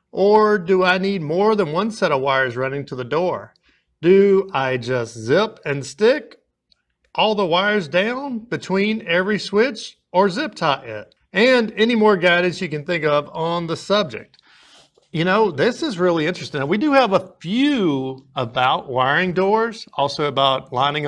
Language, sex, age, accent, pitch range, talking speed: English, male, 50-69, American, 135-200 Hz, 170 wpm